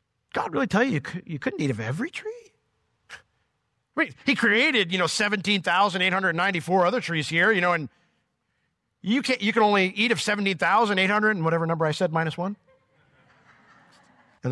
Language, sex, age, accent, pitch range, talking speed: English, male, 40-59, American, 120-195 Hz, 165 wpm